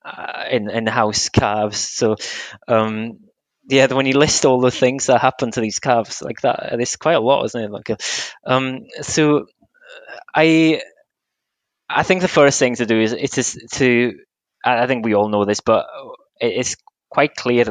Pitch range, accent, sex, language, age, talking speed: 105-125 Hz, British, male, English, 20-39, 175 wpm